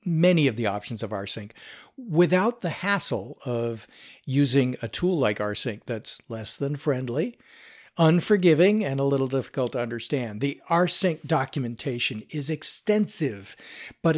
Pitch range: 115-160 Hz